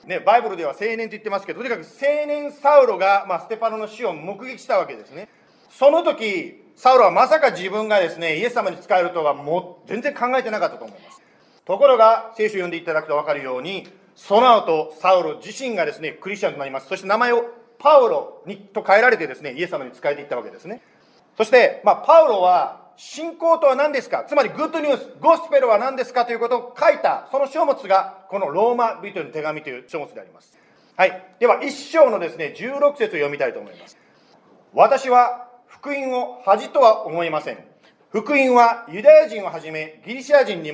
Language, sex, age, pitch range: Japanese, male, 40-59, 185-270 Hz